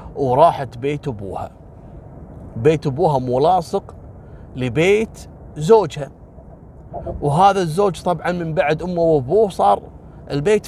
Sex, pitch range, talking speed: male, 125-195 Hz, 95 wpm